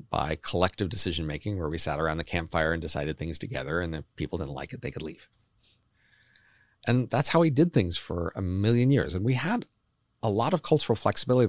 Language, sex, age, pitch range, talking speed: English, male, 40-59, 80-115 Hz, 210 wpm